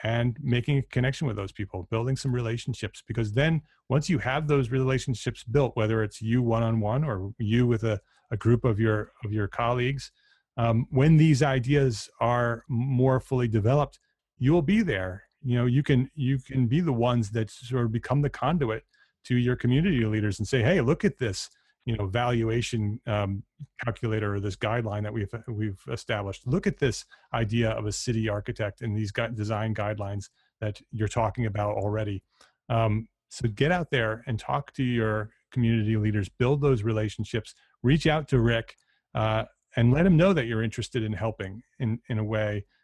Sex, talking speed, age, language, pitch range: male, 180 wpm, 30-49, English, 110-130 Hz